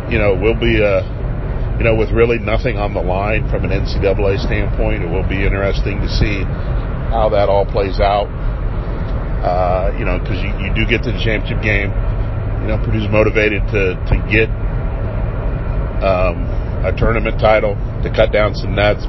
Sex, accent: male, American